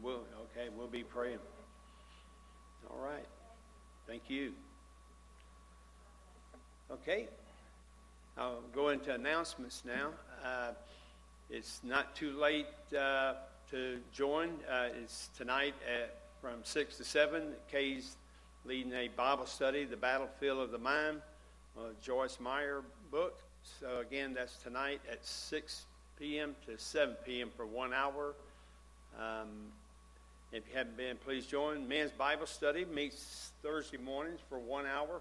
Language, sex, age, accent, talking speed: English, male, 60-79, American, 125 wpm